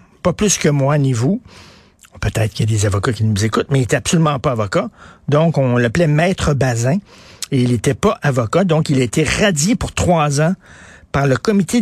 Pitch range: 125-165 Hz